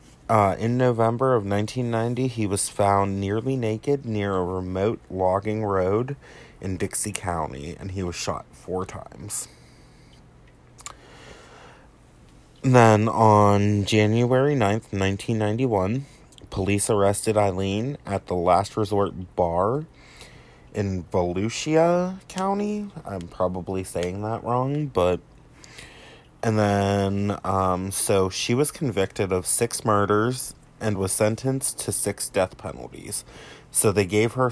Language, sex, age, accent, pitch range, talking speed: English, male, 30-49, American, 95-120 Hz, 115 wpm